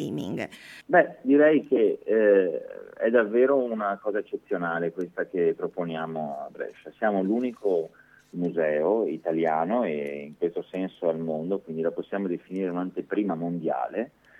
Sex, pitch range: male, 85-110 Hz